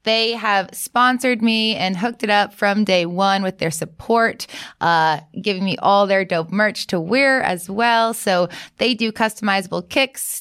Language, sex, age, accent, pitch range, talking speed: English, female, 20-39, American, 185-230 Hz, 175 wpm